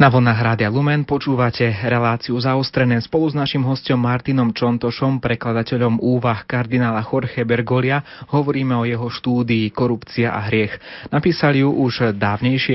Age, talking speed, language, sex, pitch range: 30-49, 130 wpm, Slovak, male, 115-135 Hz